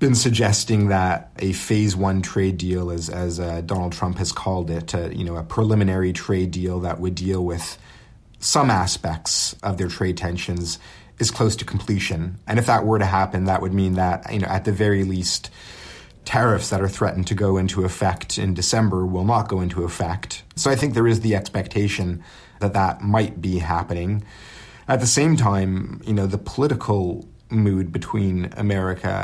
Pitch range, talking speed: 90-105 Hz, 185 wpm